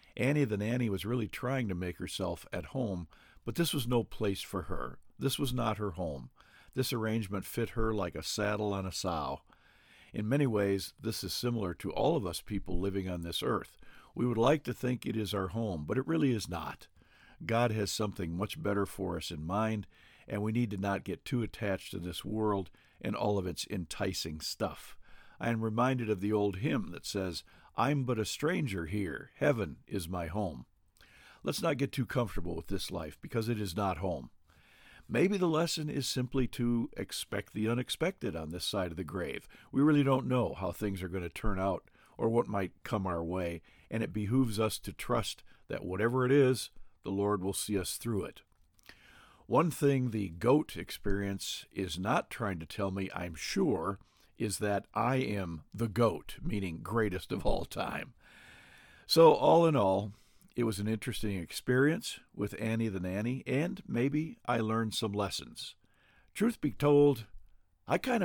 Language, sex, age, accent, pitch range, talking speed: English, male, 50-69, American, 95-120 Hz, 190 wpm